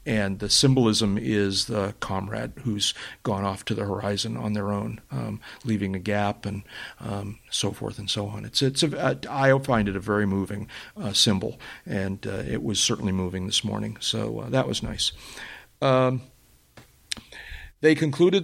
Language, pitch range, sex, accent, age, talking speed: English, 105-125 Hz, male, American, 50-69, 175 wpm